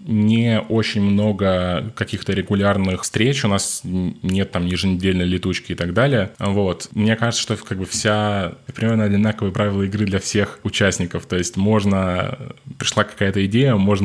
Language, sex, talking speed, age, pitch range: Russian, male, 155 wpm, 20-39, 90-105 Hz